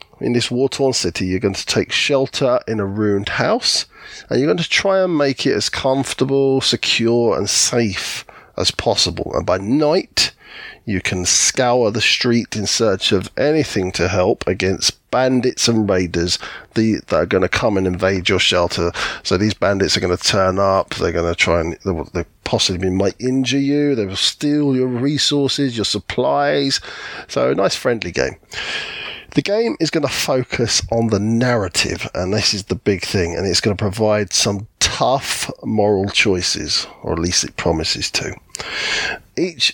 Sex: male